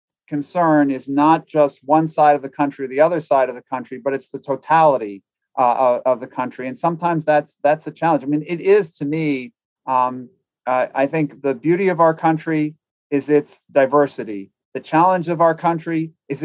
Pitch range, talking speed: 130-155 Hz, 195 wpm